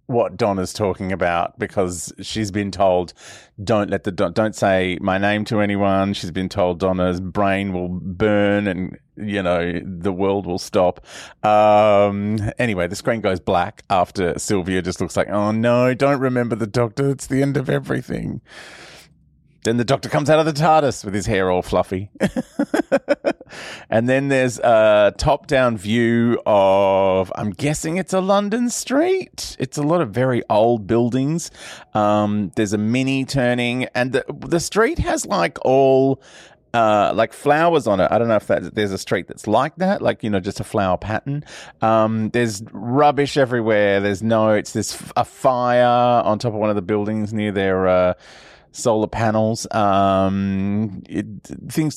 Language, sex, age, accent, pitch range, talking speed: English, male, 30-49, Australian, 100-130 Hz, 165 wpm